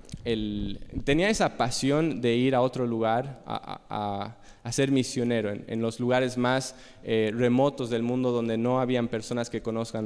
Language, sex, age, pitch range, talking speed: Spanish, male, 20-39, 120-150 Hz, 180 wpm